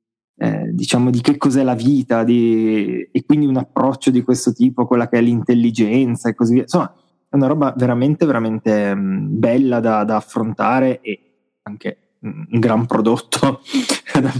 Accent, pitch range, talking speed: native, 115-130 Hz, 165 wpm